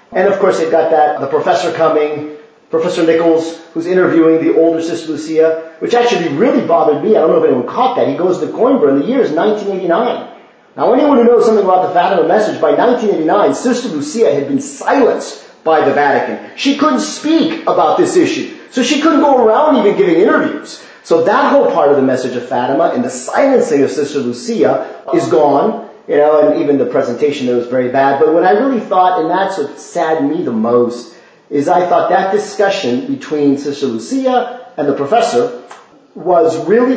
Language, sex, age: English, male, 30-49